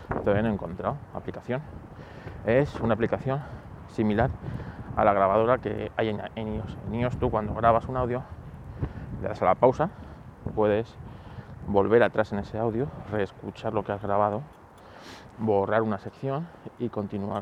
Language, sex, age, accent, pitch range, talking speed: Spanish, male, 30-49, Spanish, 100-115 Hz, 150 wpm